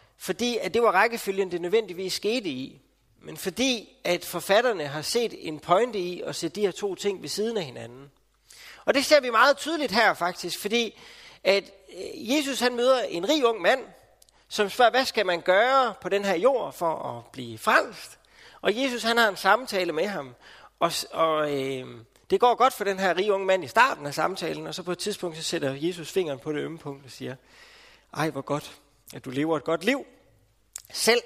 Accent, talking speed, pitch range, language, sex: native, 205 wpm, 155-230 Hz, Danish, male